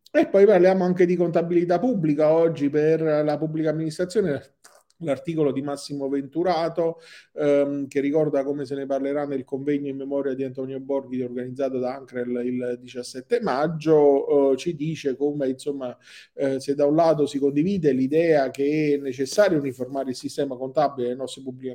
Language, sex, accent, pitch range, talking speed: Italian, male, native, 130-155 Hz, 165 wpm